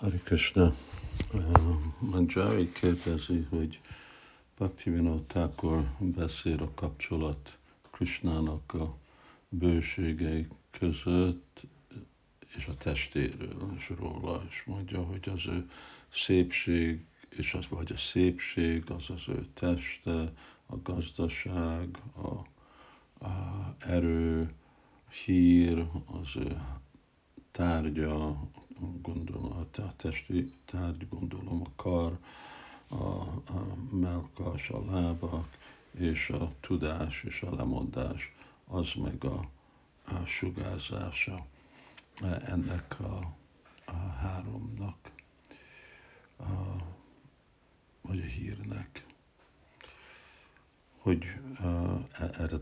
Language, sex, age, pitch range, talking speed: Hungarian, male, 60-79, 80-95 Hz, 90 wpm